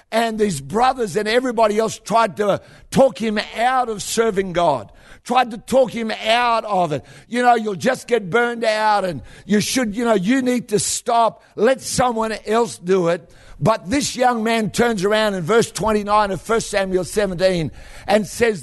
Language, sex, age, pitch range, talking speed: English, male, 60-79, 185-235 Hz, 185 wpm